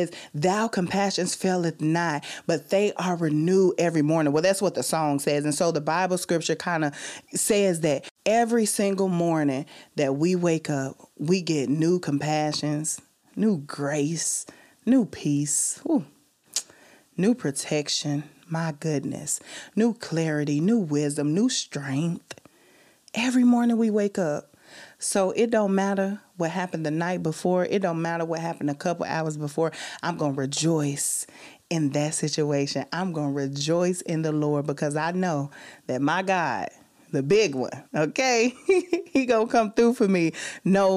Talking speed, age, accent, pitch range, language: 155 wpm, 30-49, American, 150-205 Hz, English